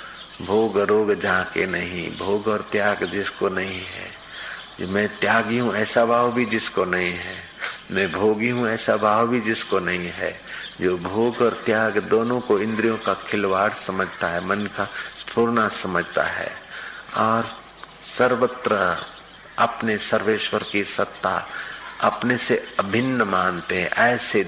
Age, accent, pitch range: 50-69, native, 95-110 Hz